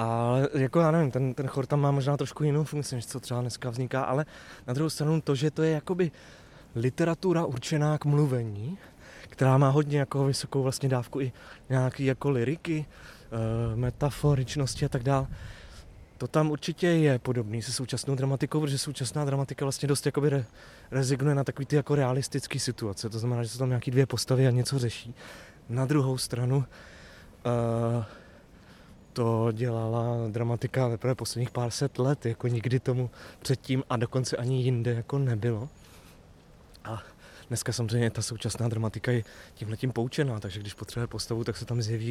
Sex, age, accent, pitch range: male, 20-39, native, 115-140 Hz